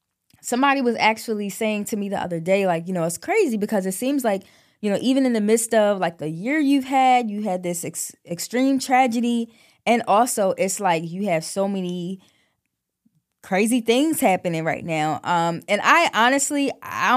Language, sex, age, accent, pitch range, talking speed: English, female, 10-29, American, 170-230 Hz, 185 wpm